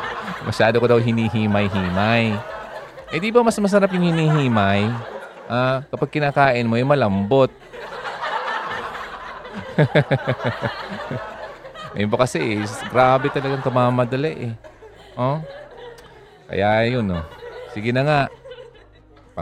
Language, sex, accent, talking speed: Filipino, male, native, 85 wpm